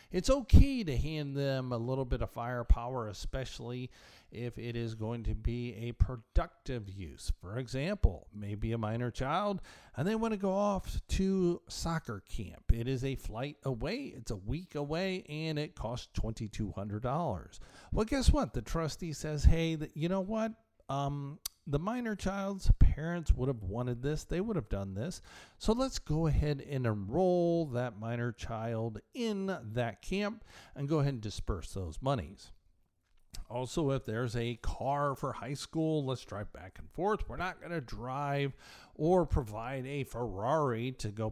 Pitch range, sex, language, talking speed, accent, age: 110-160 Hz, male, English, 165 wpm, American, 50-69